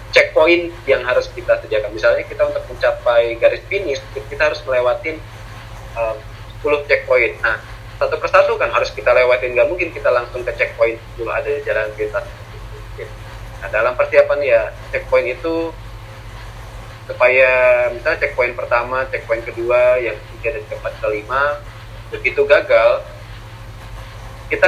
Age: 30-49